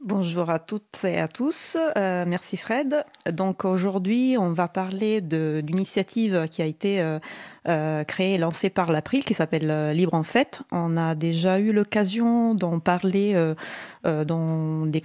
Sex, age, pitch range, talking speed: female, 30-49, 160-200 Hz, 160 wpm